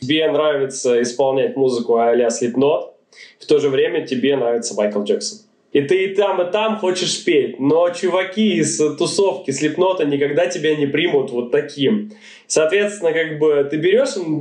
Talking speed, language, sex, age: 160 wpm, Russian, male, 20-39